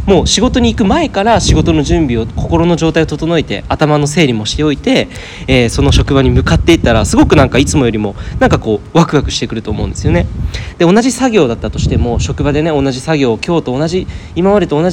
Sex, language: male, Japanese